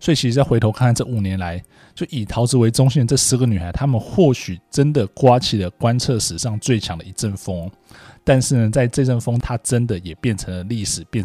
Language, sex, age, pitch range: Chinese, male, 20-39, 100-140 Hz